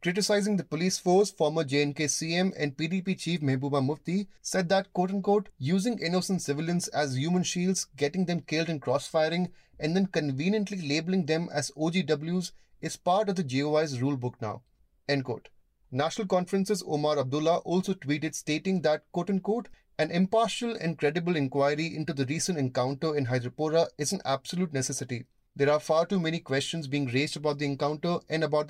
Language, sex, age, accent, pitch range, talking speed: English, male, 30-49, Indian, 140-180 Hz, 165 wpm